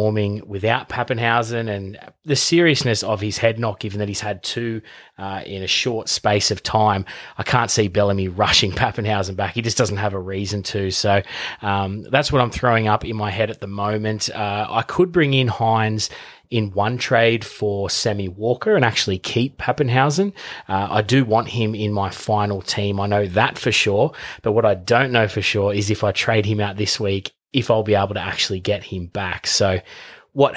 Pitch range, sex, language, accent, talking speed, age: 100-115 Hz, male, English, Australian, 205 wpm, 20-39